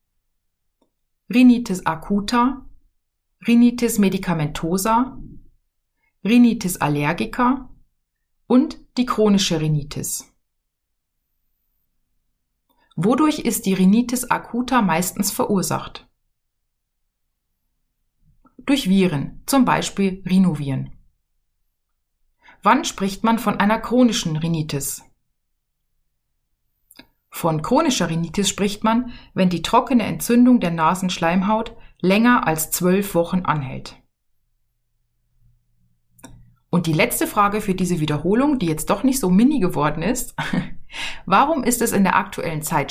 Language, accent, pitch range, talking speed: German, German, 155-235 Hz, 95 wpm